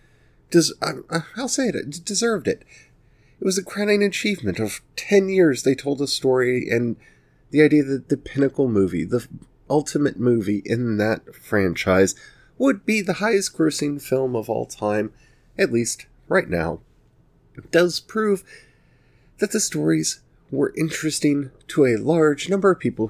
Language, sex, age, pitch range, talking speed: English, male, 30-49, 105-155 Hz, 150 wpm